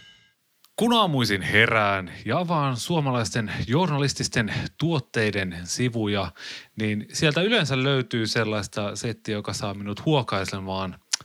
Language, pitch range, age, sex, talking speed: Finnish, 105-145 Hz, 30-49, male, 100 wpm